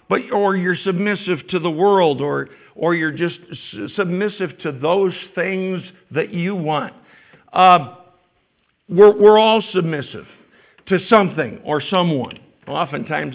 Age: 60-79